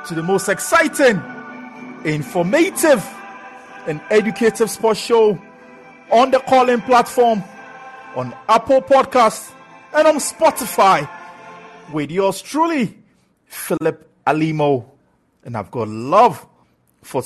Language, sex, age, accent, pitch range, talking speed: English, male, 50-69, Nigerian, 125-195 Hz, 100 wpm